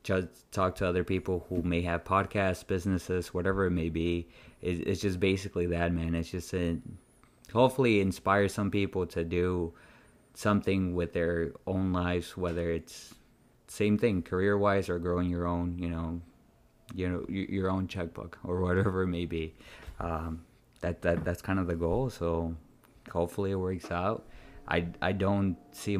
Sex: male